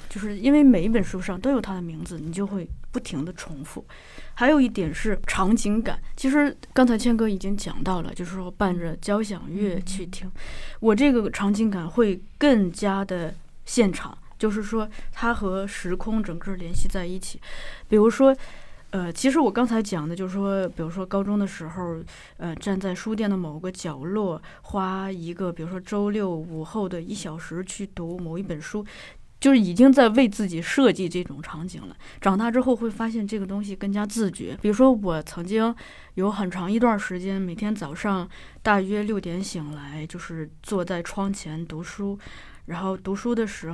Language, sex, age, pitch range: Chinese, female, 20-39, 180-220 Hz